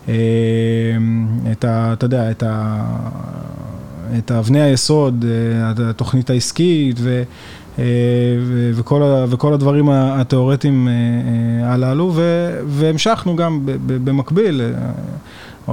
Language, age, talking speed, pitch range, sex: Hebrew, 20-39, 90 wpm, 120-145 Hz, male